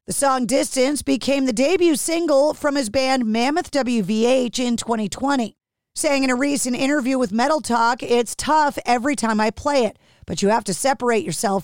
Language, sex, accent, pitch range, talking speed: English, female, American, 225-285 Hz, 180 wpm